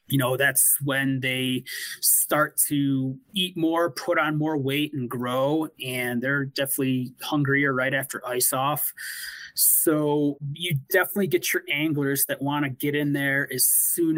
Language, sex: English, male